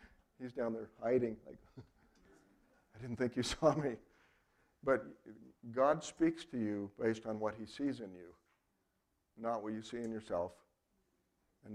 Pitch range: 105-120 Hz